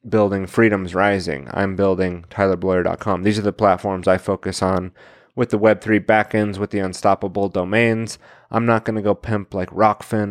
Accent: American